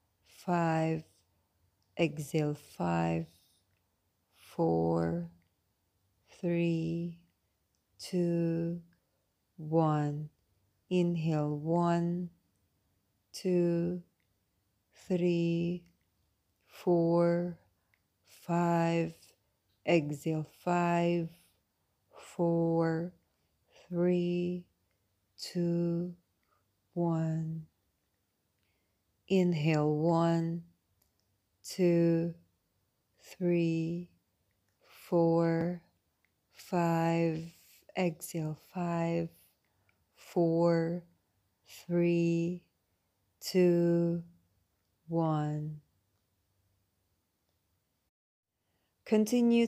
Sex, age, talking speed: female, 30-49, 40 wpm